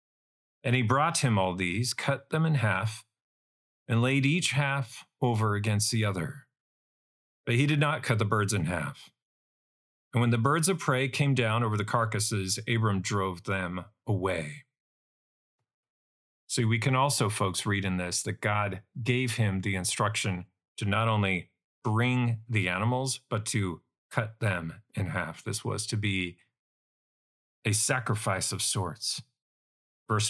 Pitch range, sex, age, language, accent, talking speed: 100-135 Hz, male, 40-59, English, American, 155 wpm